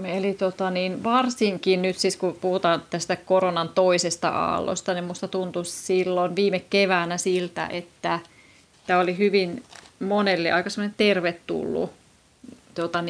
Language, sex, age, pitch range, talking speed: Finnish, female, 30-49, 175-190 Hz, 105 wpm